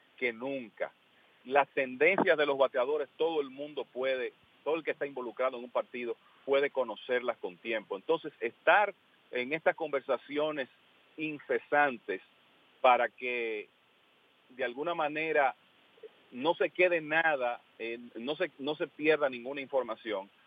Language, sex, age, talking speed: English, male, 40-59, 135 wpm